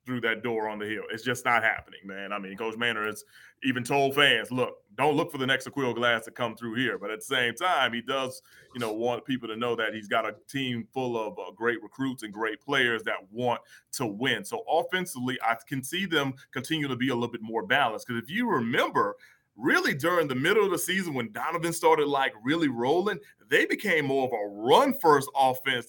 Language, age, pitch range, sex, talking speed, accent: English, 30-49, 115-140 Hz, male, 230 wpm, American